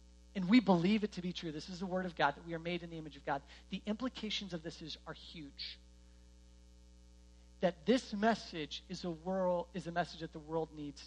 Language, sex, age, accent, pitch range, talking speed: English, male, 40-59, American, 140-205 Hz, 230 wpm